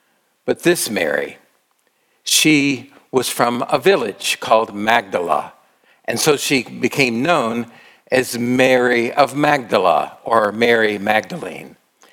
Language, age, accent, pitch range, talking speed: English, 50-69, American, 120-155 Hz, 110 wpm